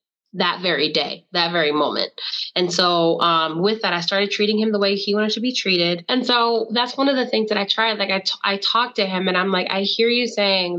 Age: 20-39